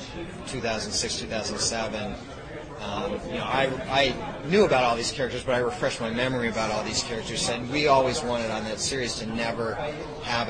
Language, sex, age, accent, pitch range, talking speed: English, male, 30-49, American, 100-115 Hz, 160 wpm